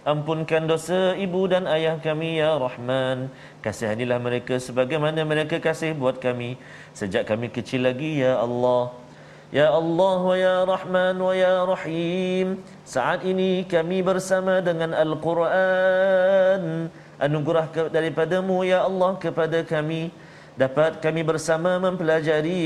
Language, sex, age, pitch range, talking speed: Malayalam, male, 40-59, 135-170 Hz, 120 wpm